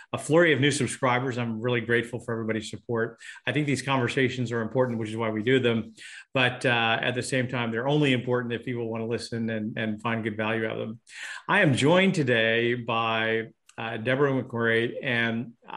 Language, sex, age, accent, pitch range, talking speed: English, male, 40-59, American, 115-130 Hz, 205 wpm